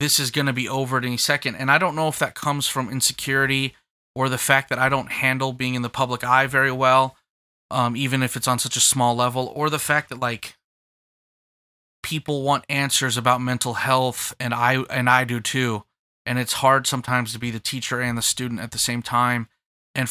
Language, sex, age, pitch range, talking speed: English, male, 20-39, 120-135 Hz, 220 wpm